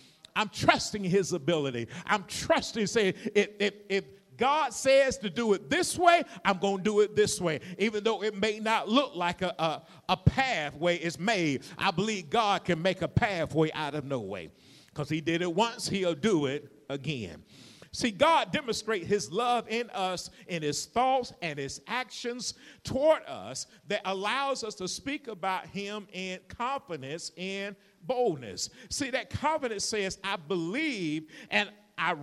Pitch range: 170-230 Hz